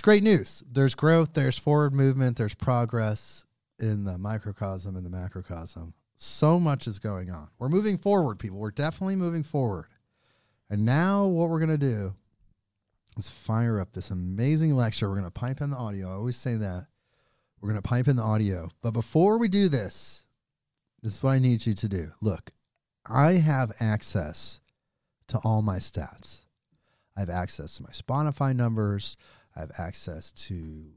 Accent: American